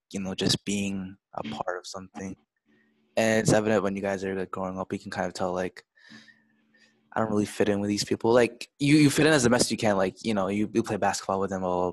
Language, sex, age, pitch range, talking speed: English, male, 20-39, 95-110 Hz, 265 wpm